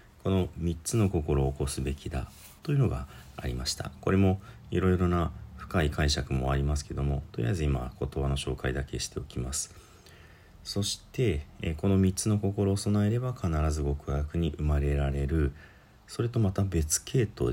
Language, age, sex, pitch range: Japanese, 40-59, male, 70-100 Hz